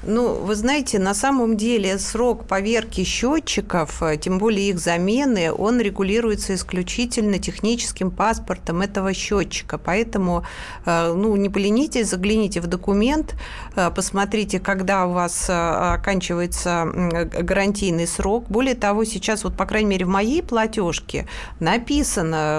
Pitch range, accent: 185-230 Hz, native